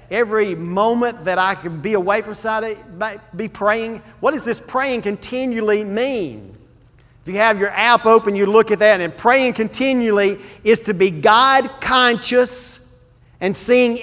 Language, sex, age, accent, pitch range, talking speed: English, male, 40-59, American, 175-230 Hz, 160 wpm